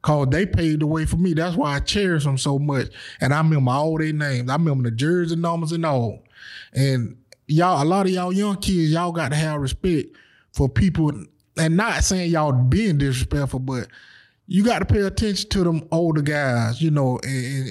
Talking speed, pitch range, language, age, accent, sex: 205 wpm, 140-180 Hz, English, 20-39, American, male